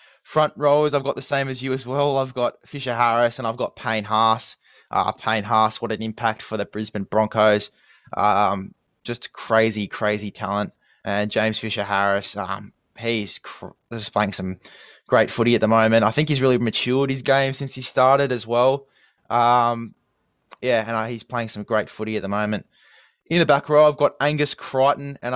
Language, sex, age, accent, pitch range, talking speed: English, male, 20-39, Australian, 105-125 Hz, 185 wpm